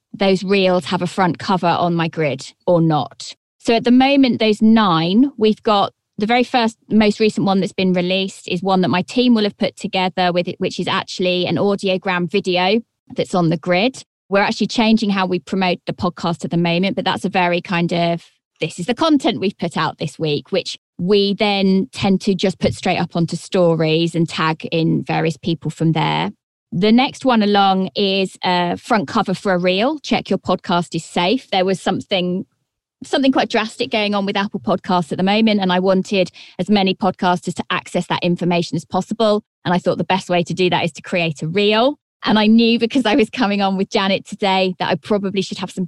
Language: English